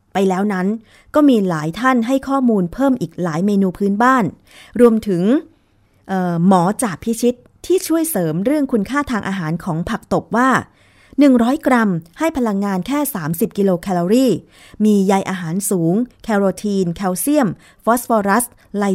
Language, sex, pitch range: Thai, female, 175-230 Hz